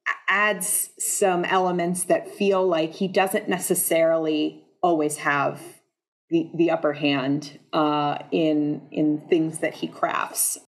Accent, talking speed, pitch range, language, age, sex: American, 125 wpm, 170-230 Hz, English, 30-49, female